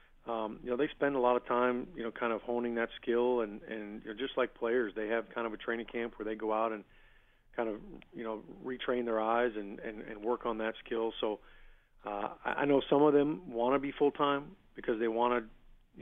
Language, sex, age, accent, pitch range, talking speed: English, male, 40-59, American, 110-120 Hz, 245 wpm